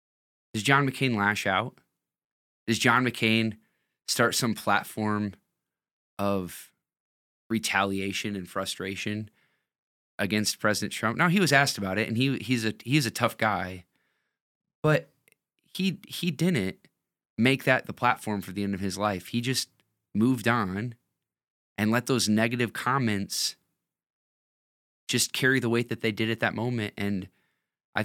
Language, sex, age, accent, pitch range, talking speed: English, male, 20-39, American, 100-130 Hz, 145 wpm